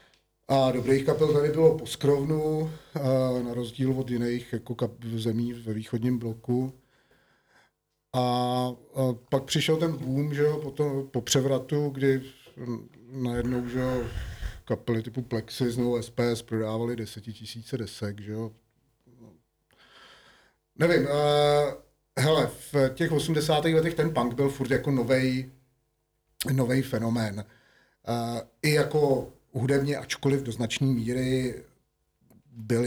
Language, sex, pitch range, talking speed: Czech, male, 110-130 Hz, 115 wpm